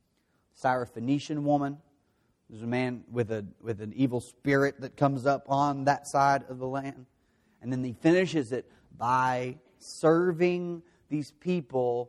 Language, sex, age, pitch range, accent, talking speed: English, male, 30-49, 130-180 Hz, American, 150 wpm